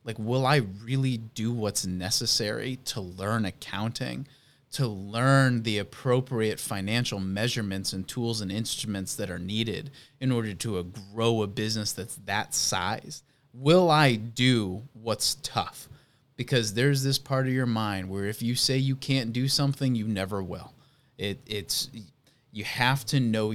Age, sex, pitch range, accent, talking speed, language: 20-39, male, 110-135 Hz, American, 155 wpm, English